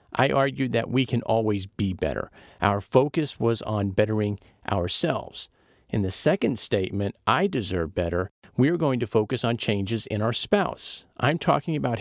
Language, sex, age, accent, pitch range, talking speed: English, male, 50-69, American, 105-140 Hz, 165 wpm